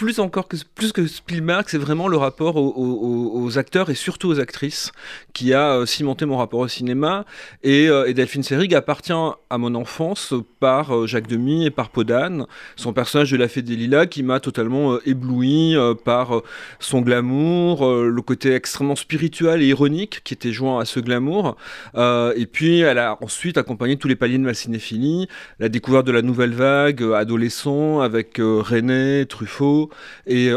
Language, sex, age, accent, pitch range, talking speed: French, male, 30-49, French, 120-155 Hz, 170 wpm